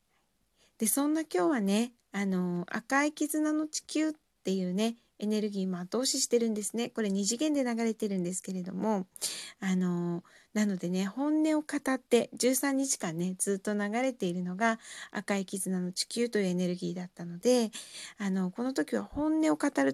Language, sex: Japanese, female